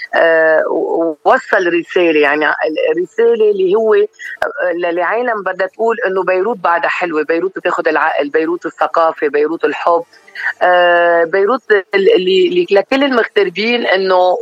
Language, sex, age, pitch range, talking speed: Arabic, female, 30-49, 175-255 Hz, 105 wpm